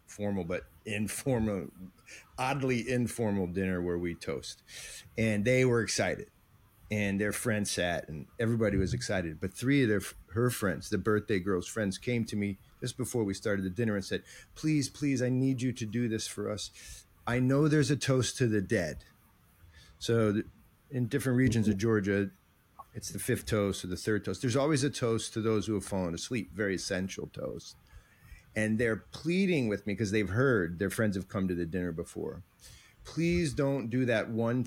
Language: English